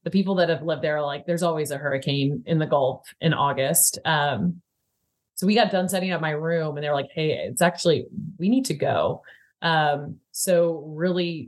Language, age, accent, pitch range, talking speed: English, 30-49, American, 145-170 Hz, 210 wpm